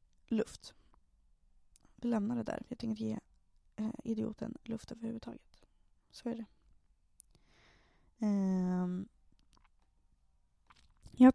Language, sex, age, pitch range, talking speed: Swedish, female, 20-39, 190-250 Hz, 80 wpm